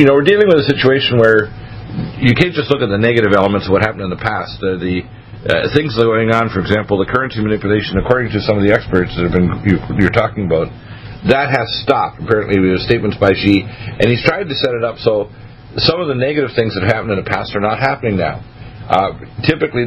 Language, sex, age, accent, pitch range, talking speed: English, male, 50-69, American, 105-125 Hz, 235 wpm